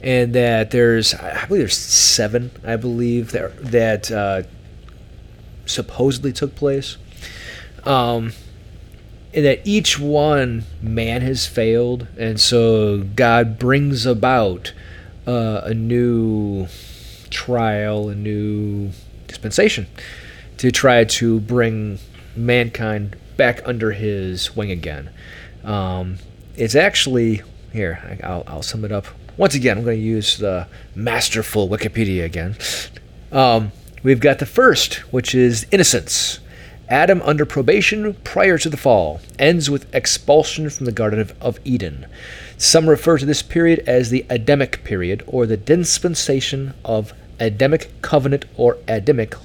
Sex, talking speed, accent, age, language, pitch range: male, 125 wpm, American, 30-49, English, 105-130 Hz